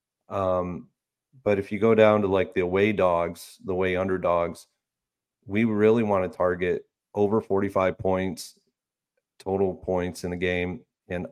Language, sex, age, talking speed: English, male, 40-59, 150 wpm